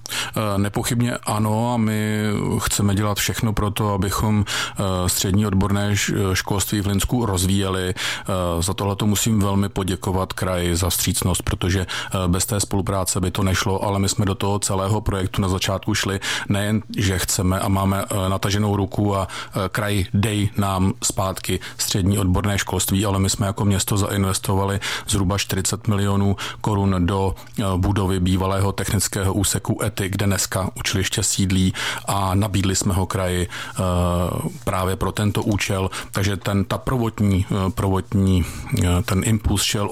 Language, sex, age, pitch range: Czech, male, 40-59, 95-105 Hz